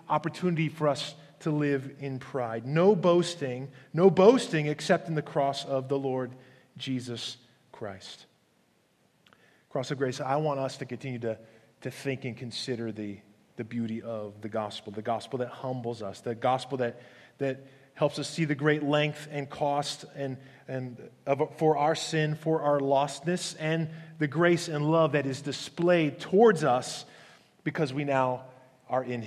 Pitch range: 125-155 Hz